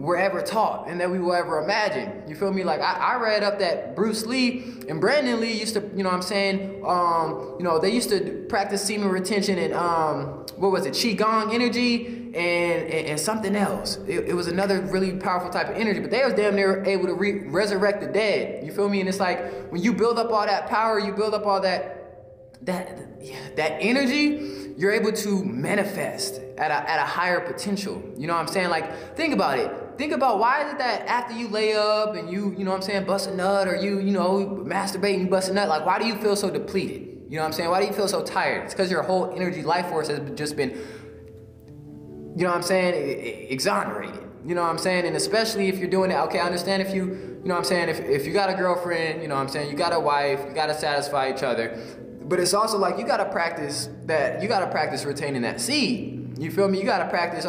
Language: English